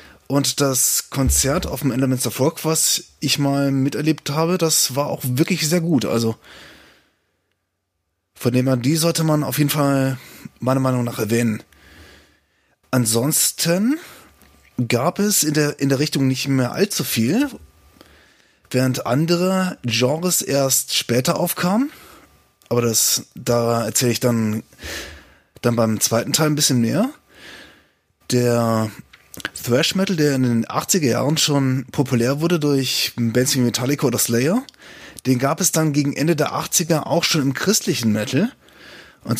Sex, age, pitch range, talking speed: male, 20-39, 120-150 Hz, 140 wpm